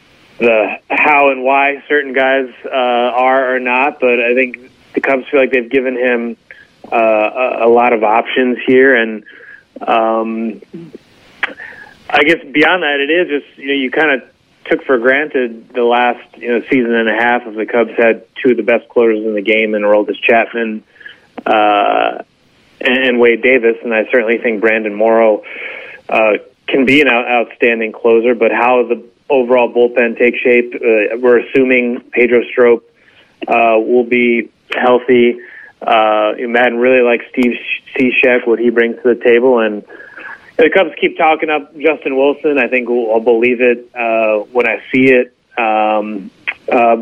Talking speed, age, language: 170 wpm, 30-49, English